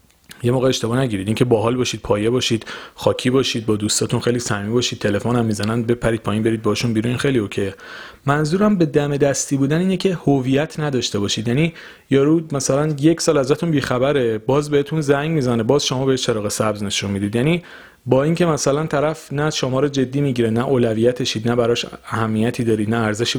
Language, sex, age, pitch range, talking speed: Persian, male, 40-59, 115-145 Hz, 185 wpm